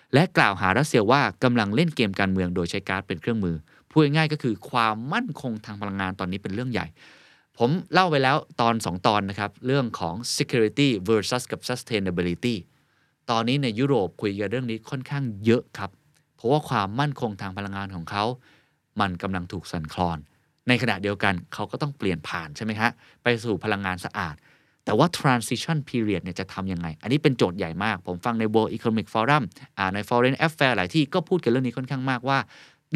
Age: 20-39